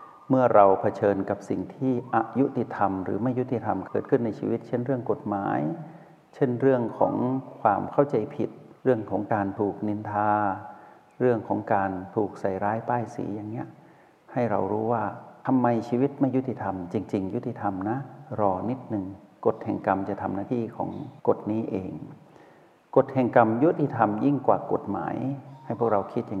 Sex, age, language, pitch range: male, 60-79, Thai, 100-125 Hz